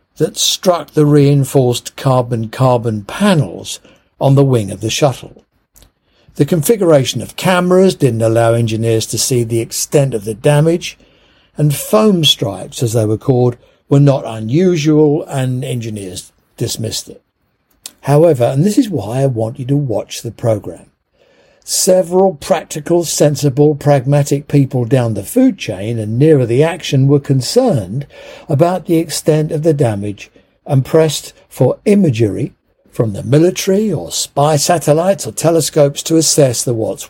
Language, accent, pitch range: English, British, 115-160 Hz